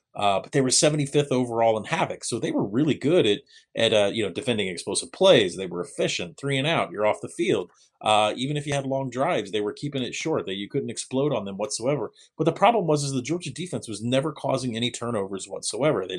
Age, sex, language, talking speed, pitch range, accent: 30-49, male, English, 240 wpm, 105-135 Hz, American